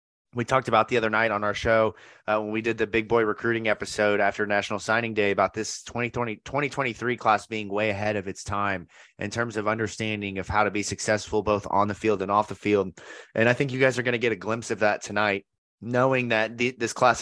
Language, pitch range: English, 105-120 Hz